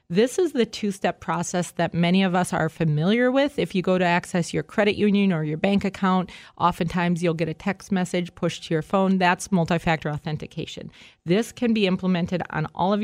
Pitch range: 170-205 Hz